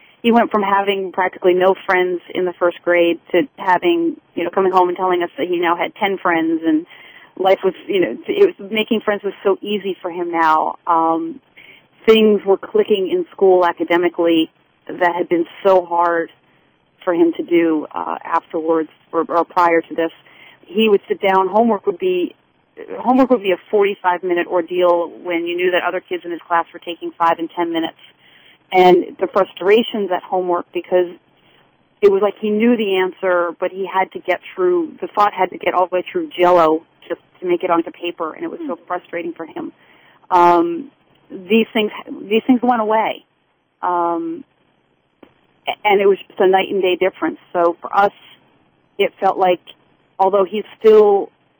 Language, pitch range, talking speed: English, 175-220 Hz, 185 wpm